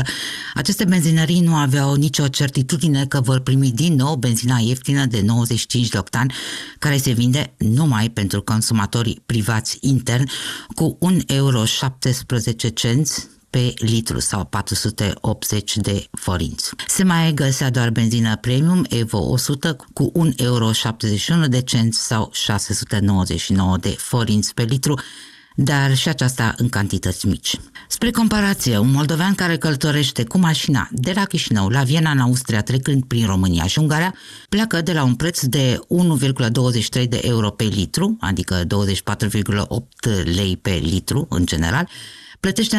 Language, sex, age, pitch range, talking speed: Romanian, female, 50-69, 110-150 Hz, 135 wpm